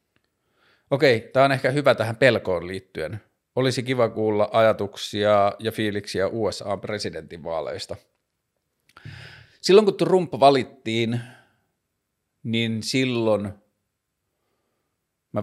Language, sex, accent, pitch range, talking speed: Finnish, male, native, 100-120 Hz, 90 wpm